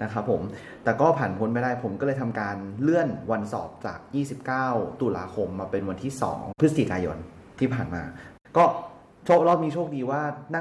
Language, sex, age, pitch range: Thai, male, 30-49, 105-150 Hz